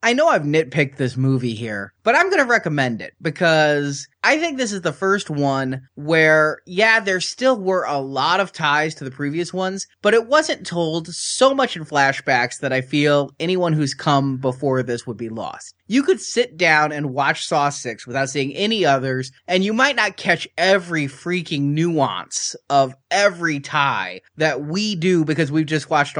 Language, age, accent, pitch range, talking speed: English, 20-39, American, 140-200 Hz, 190 wpm